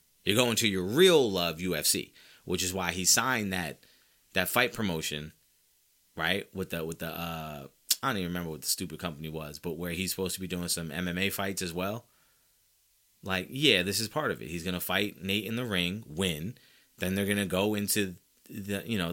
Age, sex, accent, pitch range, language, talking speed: 30-49, male, American, 90-120 Hz, English, 205 wpm